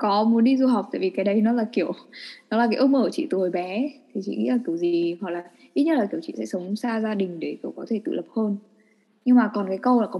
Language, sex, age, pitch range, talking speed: Vietnamese, female, 10-29, 200-260 Hz, 320 wpm